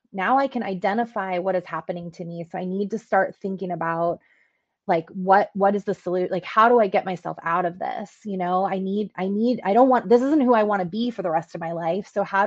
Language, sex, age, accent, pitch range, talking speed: English, female, 20-39, American, 180-215 Hz, 265 wpm